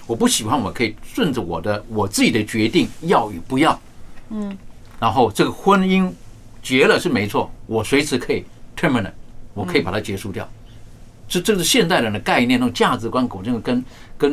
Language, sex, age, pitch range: Chinese, male, 50-69, 105-140 Hz